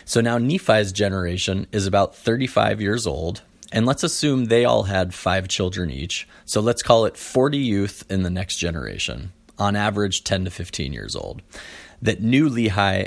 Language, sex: English, male